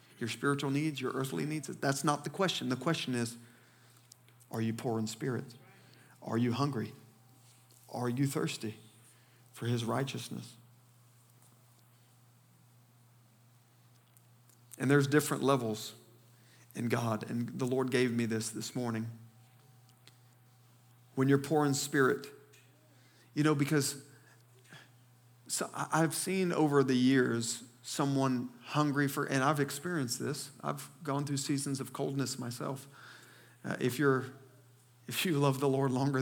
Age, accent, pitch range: 40-59, American, 115-130 Hz